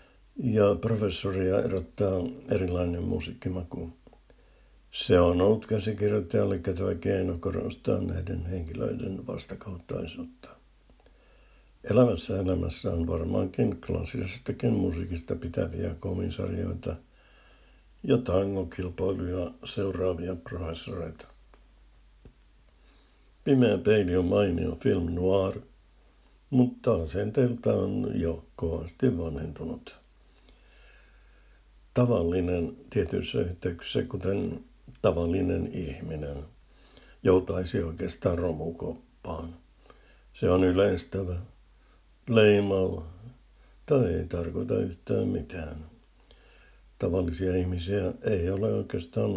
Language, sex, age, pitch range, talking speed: Finnish, male, 60-79, 85-100 Hz, 75 wpm